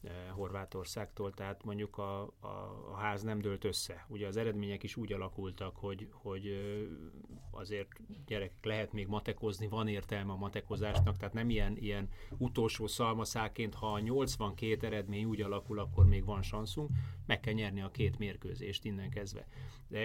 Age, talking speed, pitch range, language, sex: 30-49, 155 wpm, 95-110 Hz, Hungarian, male